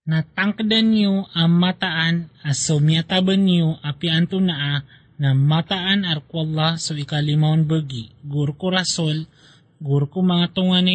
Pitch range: 150-180 Hz